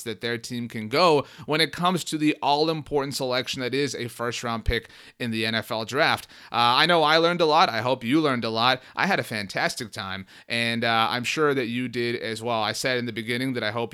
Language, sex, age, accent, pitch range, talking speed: English, male, 30-49, American, 115-150 Hz, 240 wpm